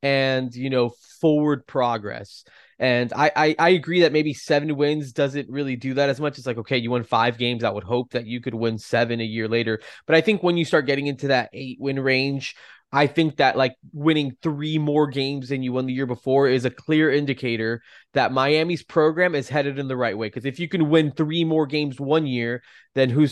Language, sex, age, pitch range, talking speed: English, male, 20-39, 125-150 Hz, 230 wpm